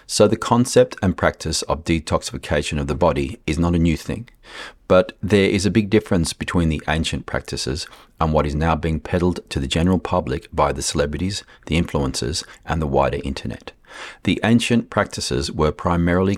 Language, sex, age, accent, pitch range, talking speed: English, male, 40-59, Australian, 75-90 Hz, 180 wpm